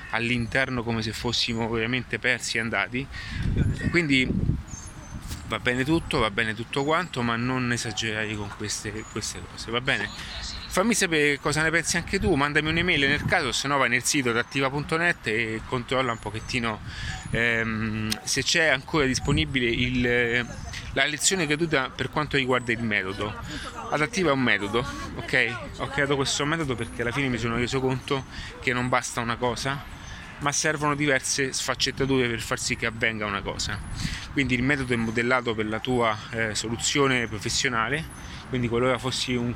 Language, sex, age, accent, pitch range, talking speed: Italian, male, 30-49, native, 115-140 Hz, 160 wpm